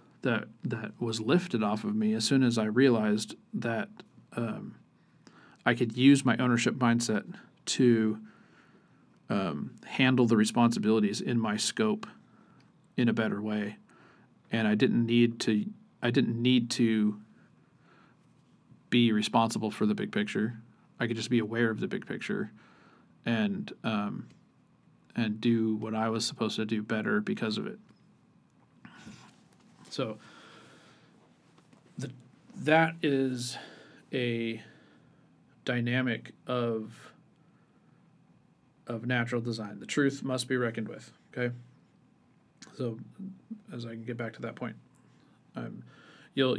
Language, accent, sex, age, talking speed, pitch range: English, American, male, 40-59, 125 wpm, 110-130 Hz